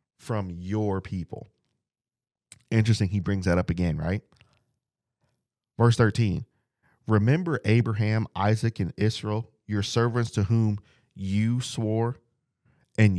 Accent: American